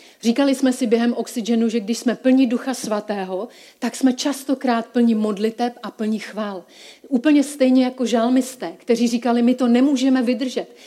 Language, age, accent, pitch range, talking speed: Czech, 40-59, native, 215-255 Hz, 160 wpm